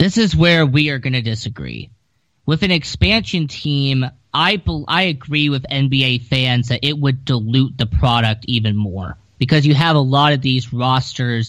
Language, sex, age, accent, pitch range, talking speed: English, male, 20-39, American, 120-145 Hz, 185 wpm